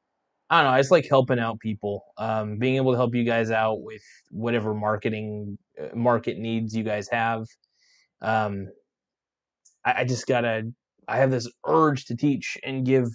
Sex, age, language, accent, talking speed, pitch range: male, 20-39, English, American, 185 wpm, 110-130 Hz